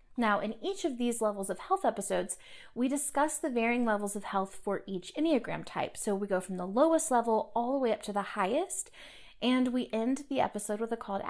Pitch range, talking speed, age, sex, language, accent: 210-280 Hz, 230 wpm, 30-49, female, English, American